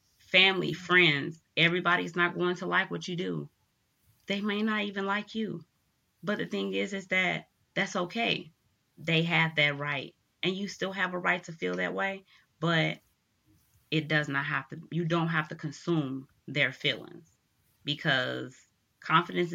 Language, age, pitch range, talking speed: English, 20-39, 145-180 Hz, 165 wpm